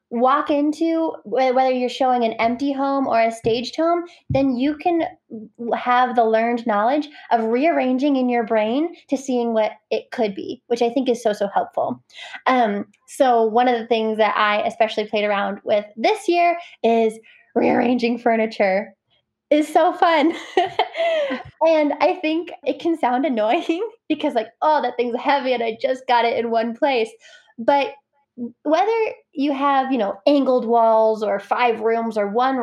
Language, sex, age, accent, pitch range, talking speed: English, female, 10-29, American, 225-300 Hz, 165 wpm